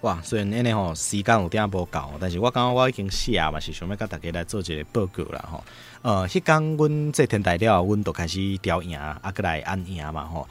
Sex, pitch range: male, 85-110 Hz